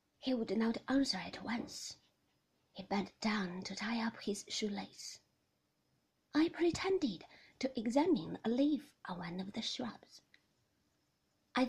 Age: 30-49